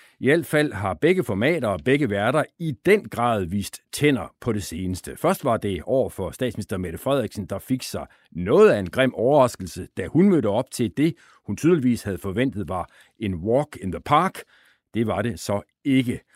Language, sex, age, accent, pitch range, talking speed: Danish, male, 60-79, native, 105-150 Hz, 200 wpm